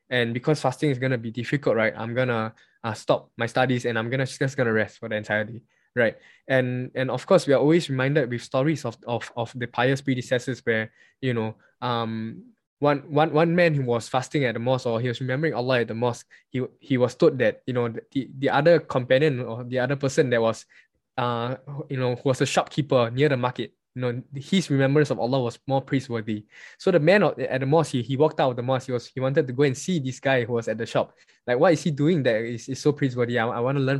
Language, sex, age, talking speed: English, male, 10-29, 255 wpm